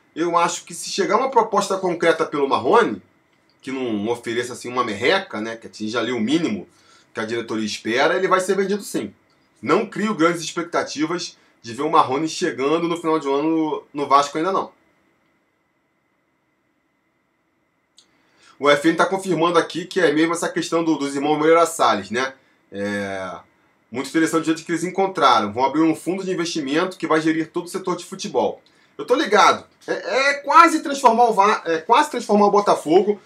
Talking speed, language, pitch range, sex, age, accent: 175 wpm, Portuguese, 135-190 Hz, male, 20-39, Brazilian